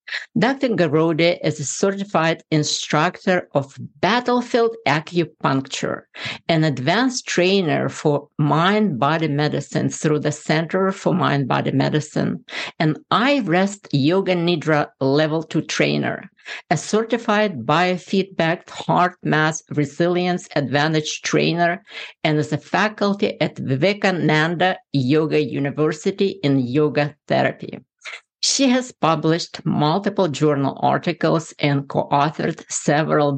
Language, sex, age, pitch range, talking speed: English, female, 50-69, 145-180 Hz, 100 wpm